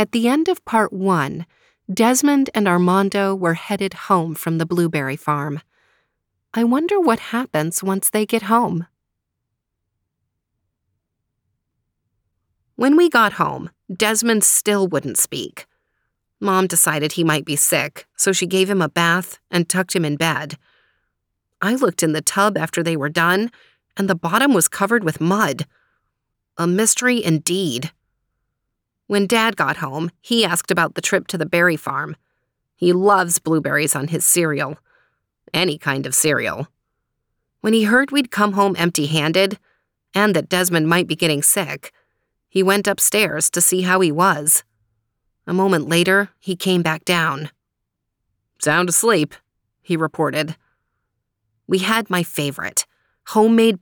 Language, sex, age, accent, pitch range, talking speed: English, female, 30-49, American, 150-200 Hz, 145 wpm